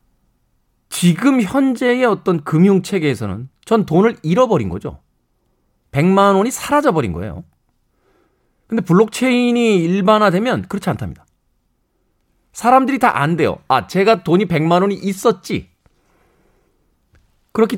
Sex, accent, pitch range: male, native, 150-210 Hz